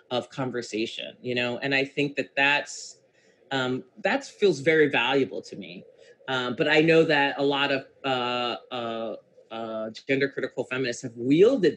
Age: 30-49